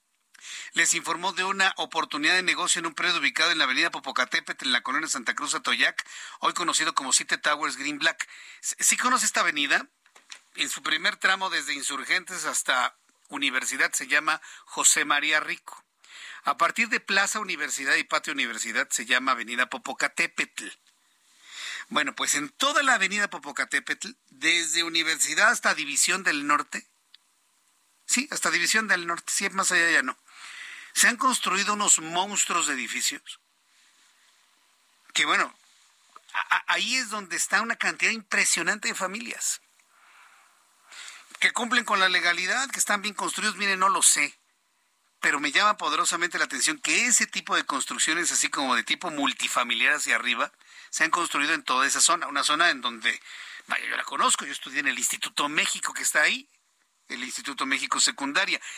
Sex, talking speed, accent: male, 160 wpm, Mexican